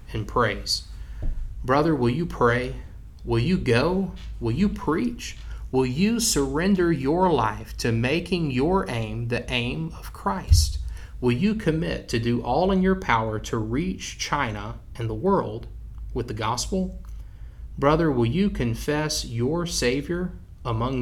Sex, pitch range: male, 115-165 Hz